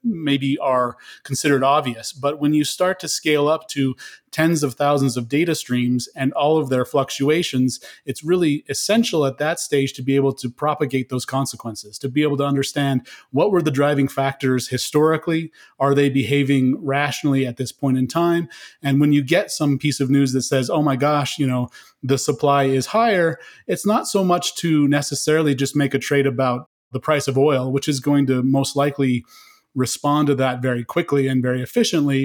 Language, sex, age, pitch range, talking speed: English, male, 30-49, 130-150 Hz, 195 wpm